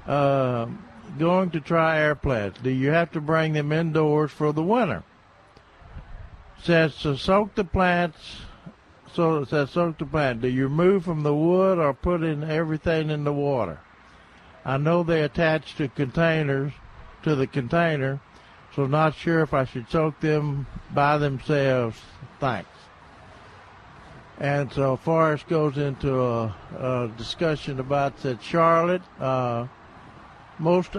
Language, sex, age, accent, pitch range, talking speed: English, male, 60-79, American, 135-165 Hz, 140 wpm